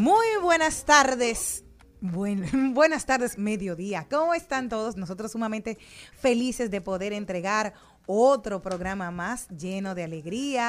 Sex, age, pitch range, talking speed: female, 20-39, 185-255 Hz, 120 wpm